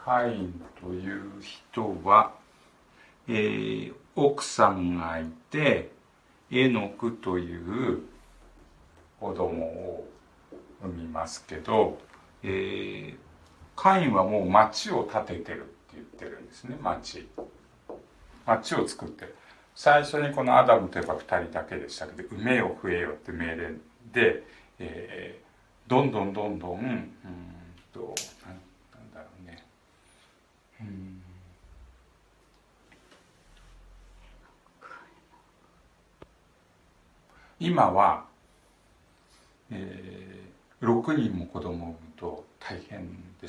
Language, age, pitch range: Japanese, 60-79, 85-110 Hz